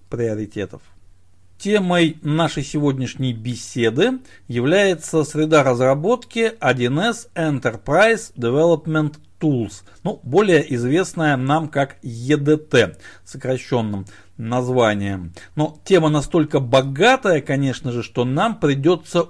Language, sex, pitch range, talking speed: Russian, male, 125-170 Hz, 85 wpm